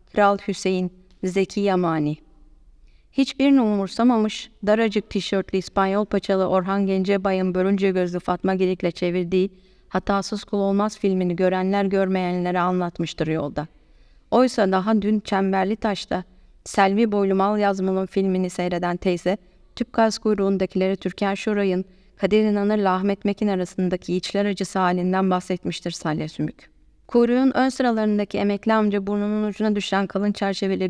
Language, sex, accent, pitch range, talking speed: Turkish, female, native, 185-205 Hz, 120 wpm